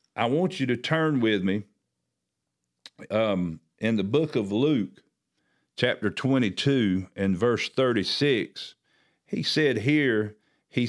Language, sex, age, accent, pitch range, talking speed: English, male, 50-69, American, 100-135 Hz, 120 wpm